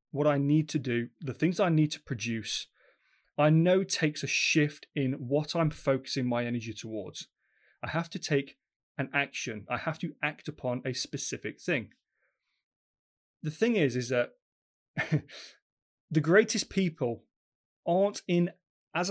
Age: 30-49